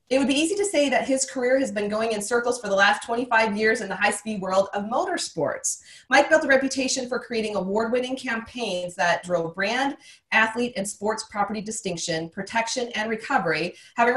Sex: female